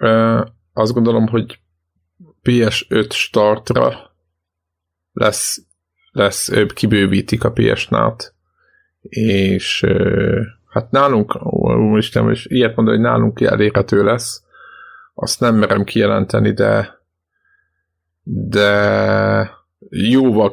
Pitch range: 100-115 Hz